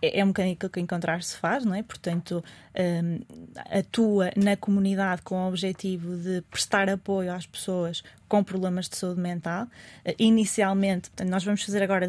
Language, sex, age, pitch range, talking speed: Portuguese, female, 20-39, 175-195 Hz, 150 wpm